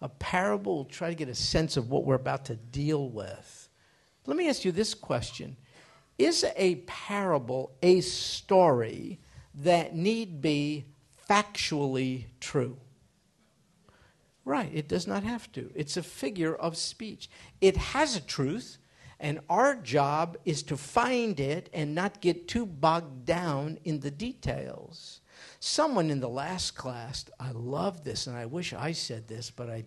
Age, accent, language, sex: 50-69, American, English, male